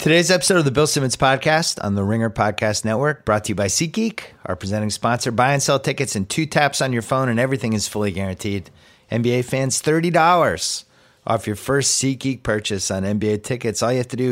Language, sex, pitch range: English, male, 90-115 Hz